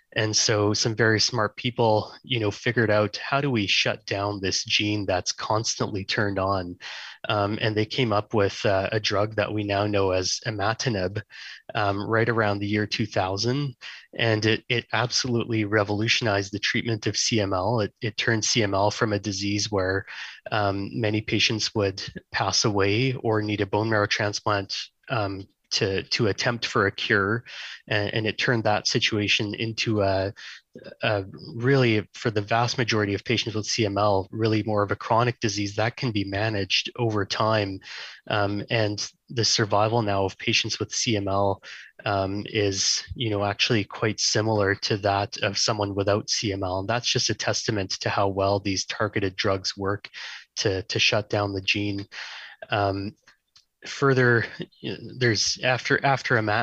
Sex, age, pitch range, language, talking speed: male, 20-39, 100-115 Hz, English, 165 wpm